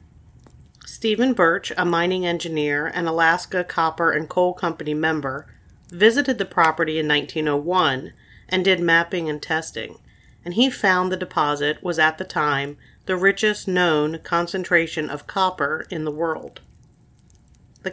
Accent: American